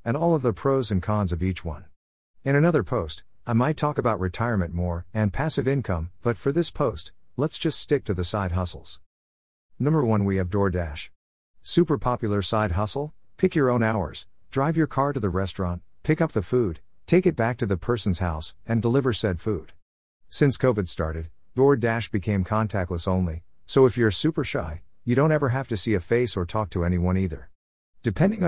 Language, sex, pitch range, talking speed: English, male, 90-125 Hz, 195 wpm